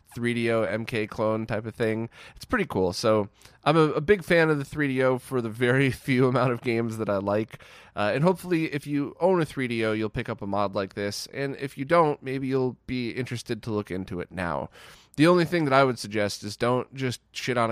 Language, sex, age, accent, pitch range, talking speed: English, male, 20-39, American, 105-135 Hz, 230 wpm